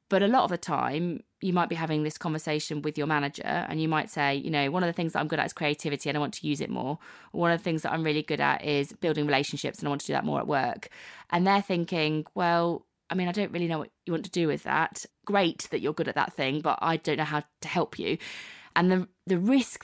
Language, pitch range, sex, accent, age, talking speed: English, 150-180 Hz, female, British, 20-39, 285 wpm